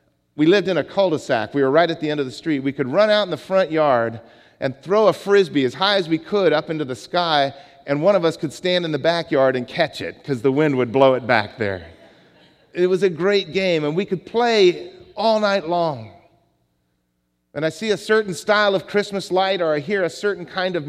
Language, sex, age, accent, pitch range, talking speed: English, male, 40-59, American, 135-200 Hz, 240 wpm